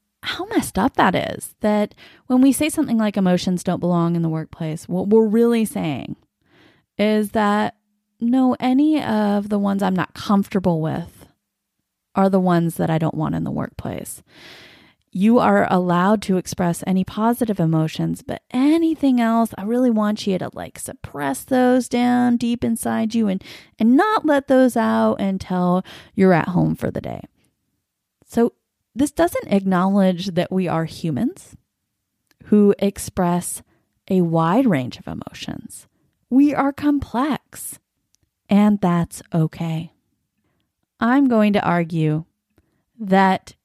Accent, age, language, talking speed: American, 20-39, English, 145 wpm